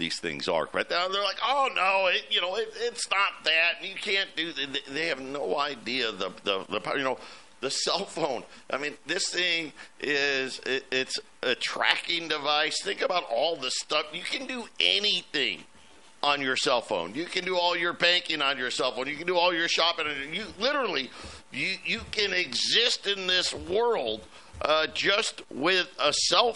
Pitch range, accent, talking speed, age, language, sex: 155-200 Hz, American, 195 wpm, 50-69, English, male